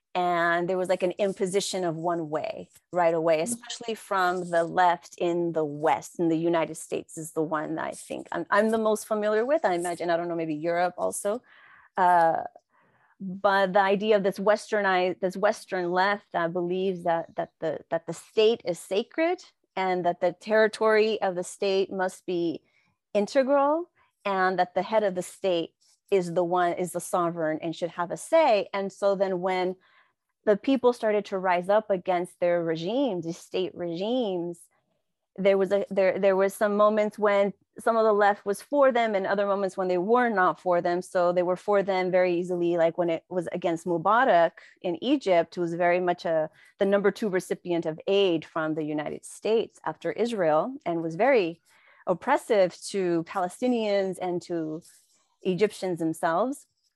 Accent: American